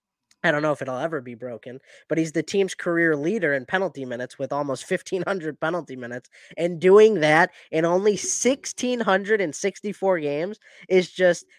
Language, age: English, 10-29